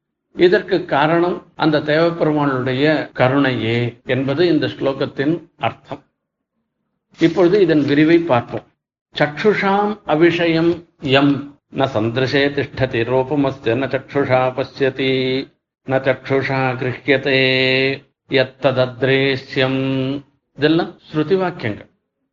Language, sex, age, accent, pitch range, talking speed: Tamil, male, 50-69, native, 135-175 Hz, 75 wpm